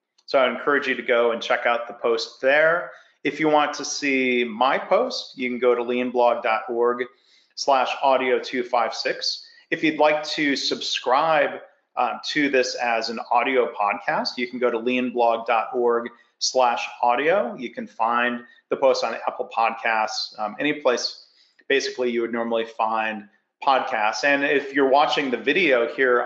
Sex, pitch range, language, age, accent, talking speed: male, 115-140 Hz, English, 40-59, American, 155 wpm